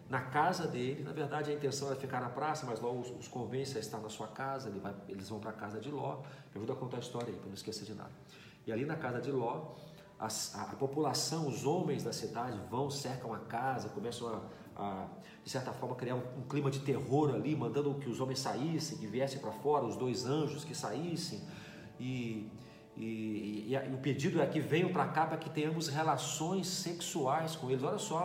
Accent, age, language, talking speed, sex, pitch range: Brazilian, 40-59, Portuguese, 225 wpm, male, 130-170 Hz